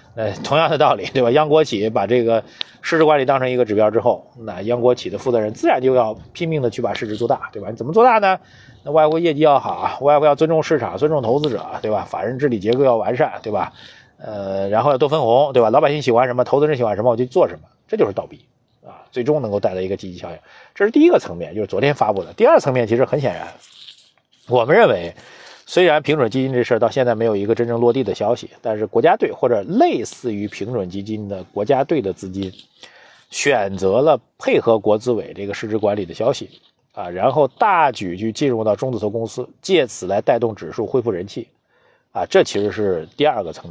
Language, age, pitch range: Chinese, 30-49, 105-150 Hz